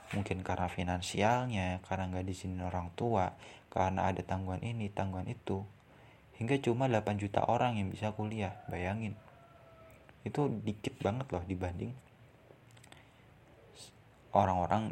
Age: 30-49